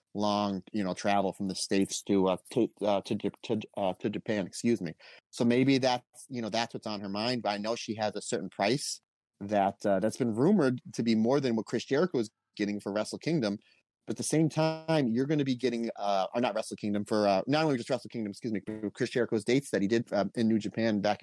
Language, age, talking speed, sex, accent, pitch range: English, 30-49, 245 wpm, male, American, 100-125 Hz